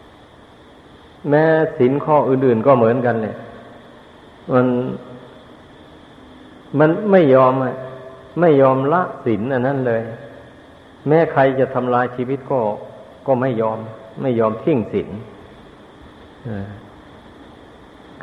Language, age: Thai, 60-79